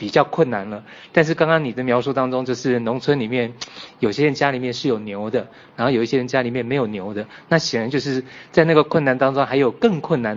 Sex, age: male, 20-39